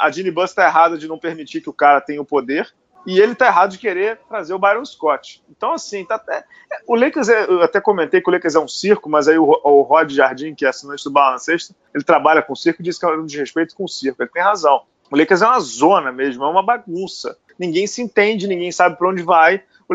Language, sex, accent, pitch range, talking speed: Portuguese, male, Brazilian, 155-230 Hz, 270 wpm